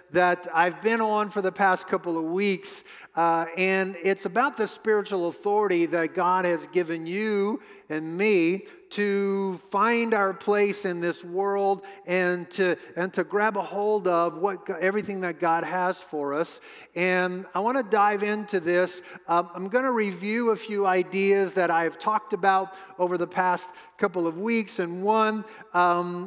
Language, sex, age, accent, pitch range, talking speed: English, male, 50-69, American, 175-200 Hz, 170 wpm